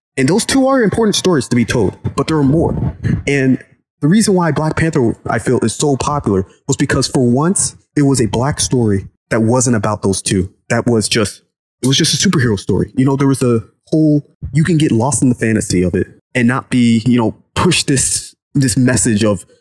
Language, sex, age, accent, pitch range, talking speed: English, male, 20-39, American, 115-155 Hz, 220 wpm